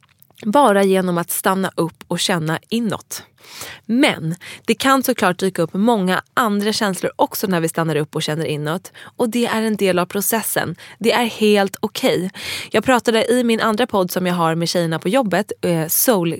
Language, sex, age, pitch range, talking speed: English, female, 20-39, 175-225 Hz, 185 wpm